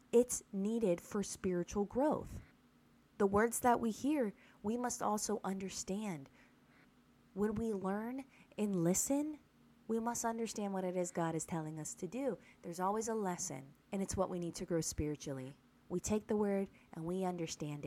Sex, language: female, English